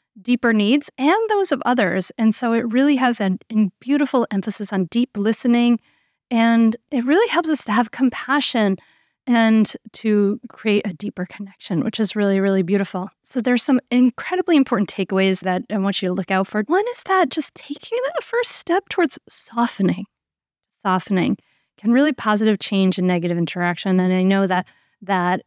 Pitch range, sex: 195-260 Hz, female